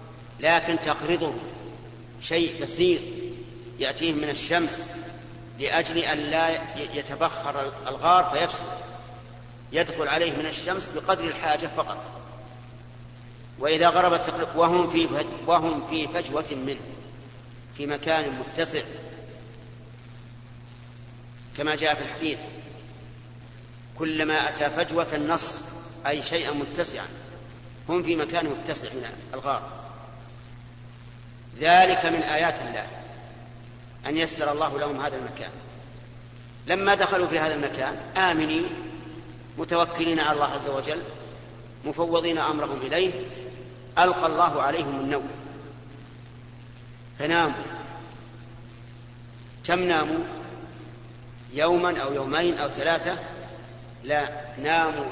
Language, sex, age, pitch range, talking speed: Arabic, male, 50-69, 120-165 Hz, 90 wpm